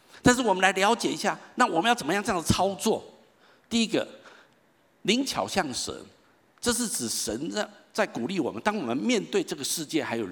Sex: male